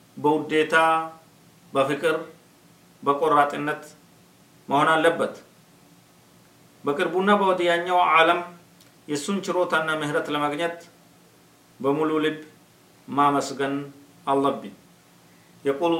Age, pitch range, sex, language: 50-69, 125-170 Hz, male, Amharic